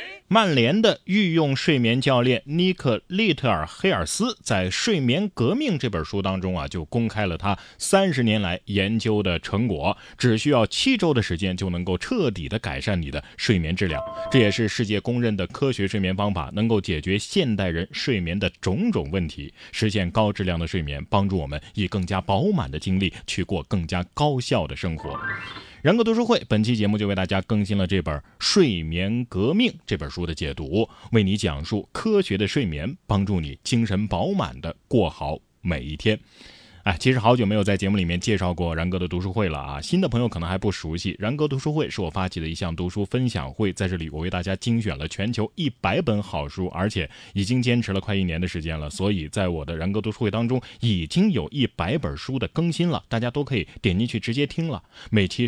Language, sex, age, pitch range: Chinese, male, 20-39, 90-120 Hz